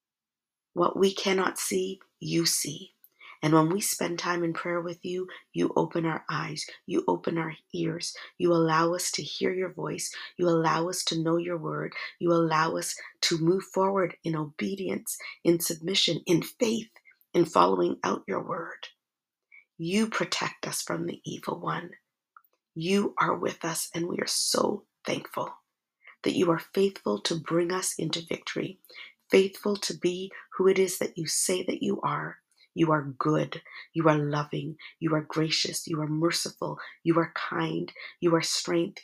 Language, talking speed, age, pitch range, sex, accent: English, 170 wpm, 40-59, 160-190 Hz, female, American